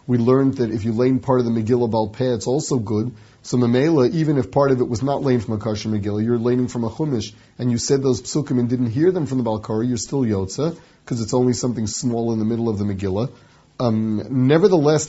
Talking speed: 245 wpm